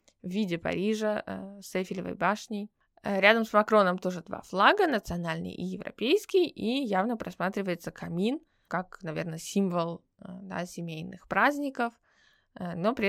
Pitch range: 175-220 Hz